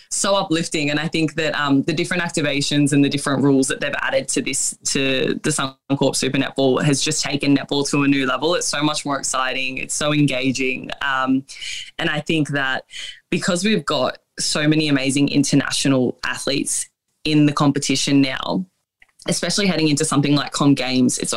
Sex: female